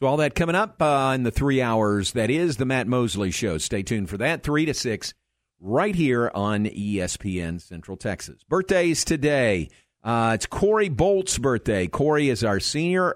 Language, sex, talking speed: English, male, 180 wpm